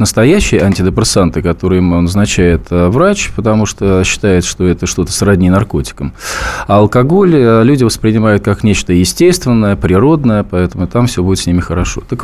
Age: 20-39